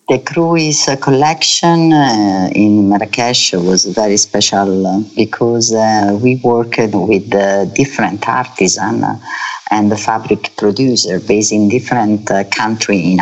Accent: Italian